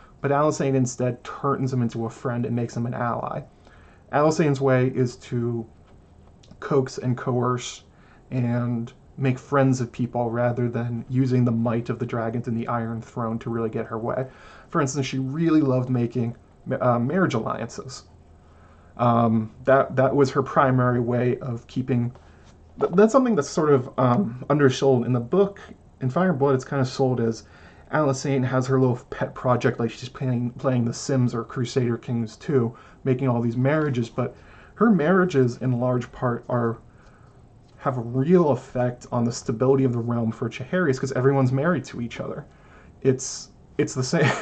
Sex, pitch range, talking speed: male, 120-135 Hz, 175 wpm